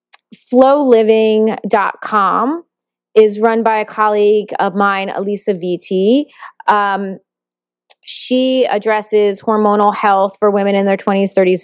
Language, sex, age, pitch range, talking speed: English, female, 30-49, 195-225 Hz, 105 wpm